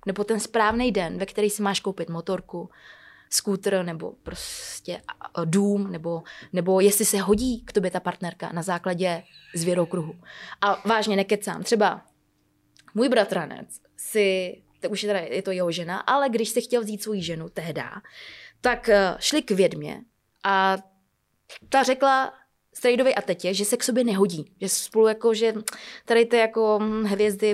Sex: female